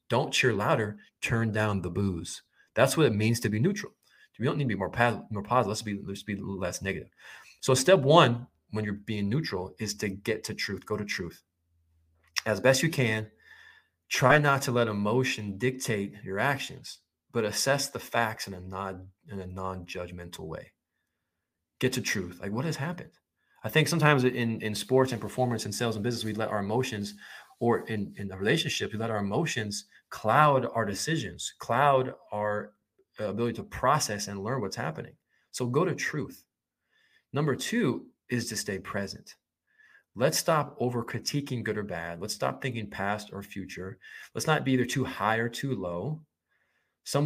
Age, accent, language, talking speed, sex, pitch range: 20-39, American, English, 175 wpm, male, 100-130 Hz